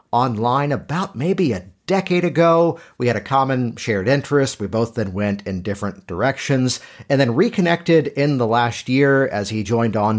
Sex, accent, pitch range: male, American, 100-130 Hz